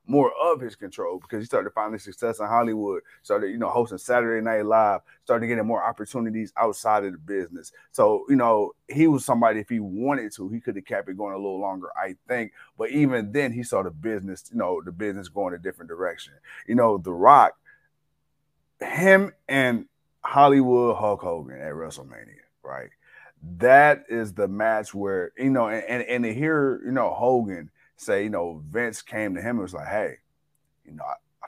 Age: 30-49